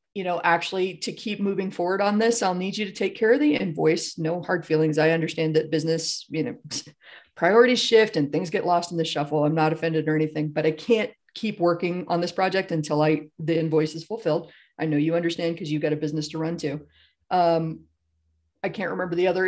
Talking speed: 225 wpm